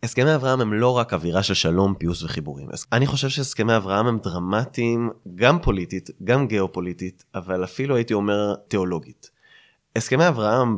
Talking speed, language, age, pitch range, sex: 150 wpm, Hebrew, 20-39, 95-130 Hz, male